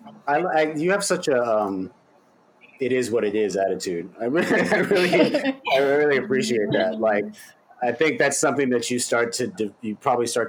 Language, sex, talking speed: English, male, 185 wpm